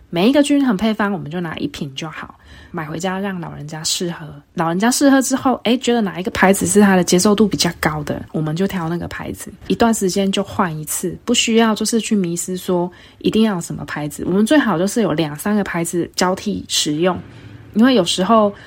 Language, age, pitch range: Chinese, 20-39, 170-220 Hz